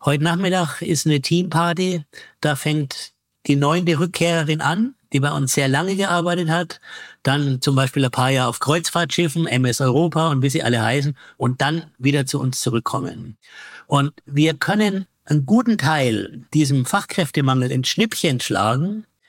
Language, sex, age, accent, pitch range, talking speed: German, male, 50-69, German, 130-165 Hz, 155 wpm